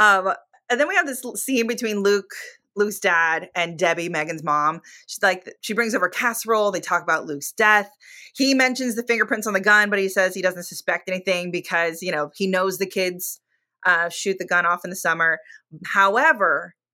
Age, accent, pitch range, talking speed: 20-39, American, 175-220 Hz, 200 wpm